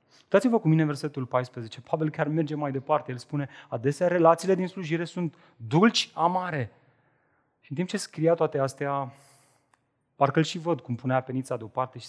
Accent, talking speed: native, 180 wpm